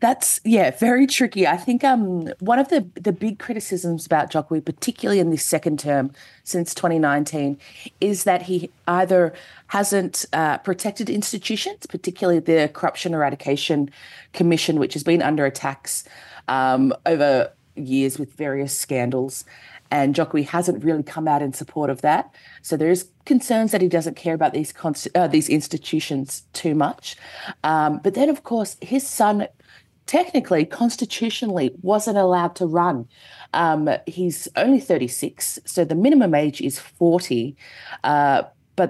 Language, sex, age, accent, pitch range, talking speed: English, female, 30-49, Australian, 150-200 Hz, 150 wpm